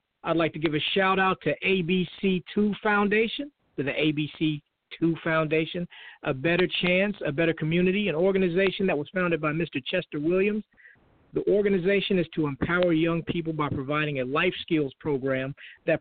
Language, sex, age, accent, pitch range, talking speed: English, male, 50-69, American, 145-185 Hz, 170 wpm